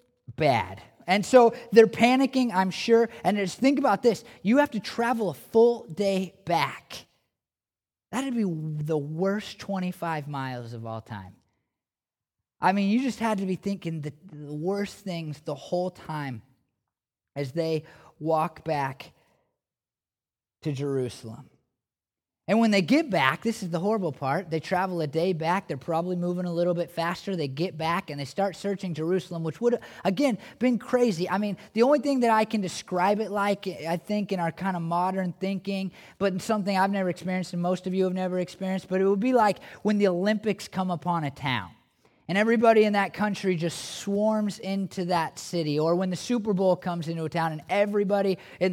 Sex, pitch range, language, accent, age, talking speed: male, 155-205 Hz, English, American, 20-39, 185 wpm